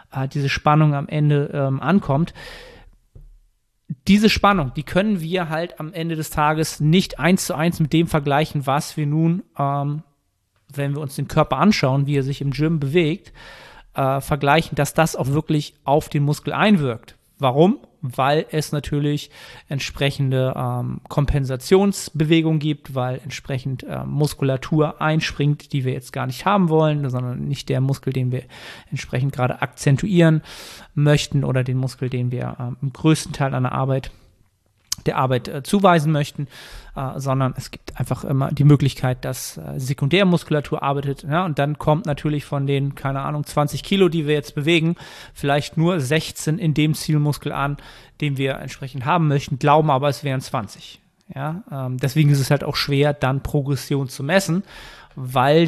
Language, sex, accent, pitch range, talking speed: German, male, German, 135-160 Hz, 165 wpm